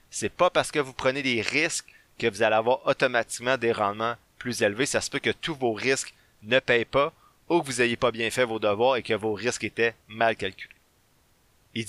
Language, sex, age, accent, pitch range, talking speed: French, male, 30-49, Canadian, 110-135 Hz, 220 wpm